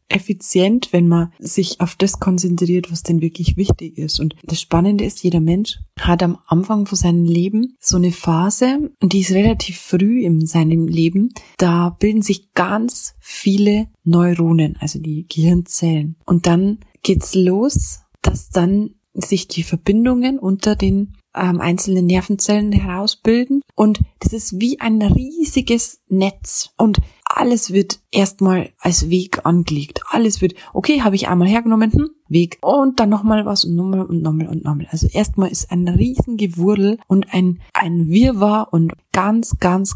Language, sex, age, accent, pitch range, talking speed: German, female, 30-49, German, 170-210 Hz, 160 wpm